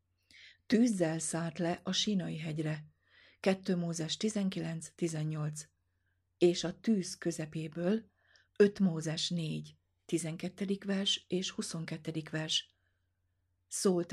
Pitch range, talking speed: 150-180 Hz, 95 wpm